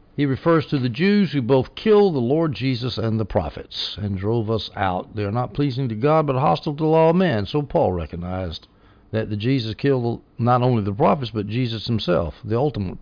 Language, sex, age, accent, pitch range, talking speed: English, male, 60-79, American, 100-140 Hz, 215 wpm